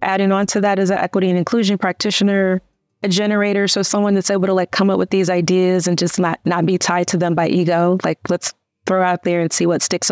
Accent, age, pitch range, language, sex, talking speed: American, 30-49, 165-190 Hz, English, female, 250 wpm